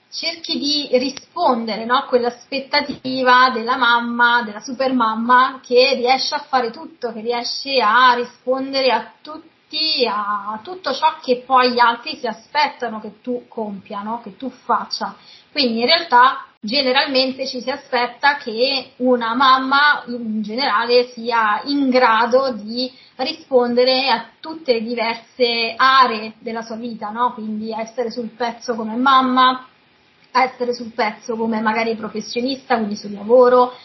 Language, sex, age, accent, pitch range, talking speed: Italian, female, 20-39, native, 230-265 Hz, 135 wpm